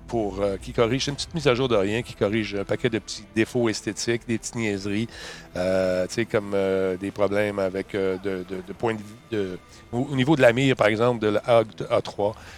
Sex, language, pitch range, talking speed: male, French, 105-130 Hz, 215 wpm